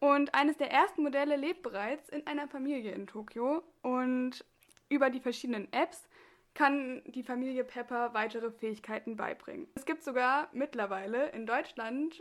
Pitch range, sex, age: 225-285 Hz, female, 10-29